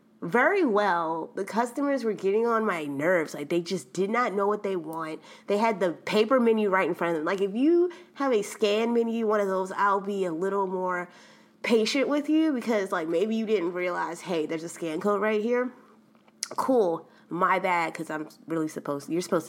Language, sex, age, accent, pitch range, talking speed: English, female, 20-39, American, 185-275 Hz, 210 wpm